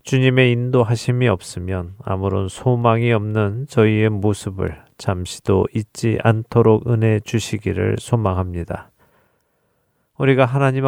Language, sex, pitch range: Korean, male, 100-115 Hz